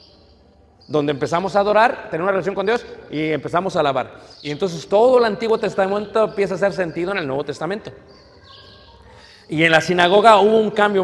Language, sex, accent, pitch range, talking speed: Spanish, male, Mexican, 135-190 Hz, 185 wpm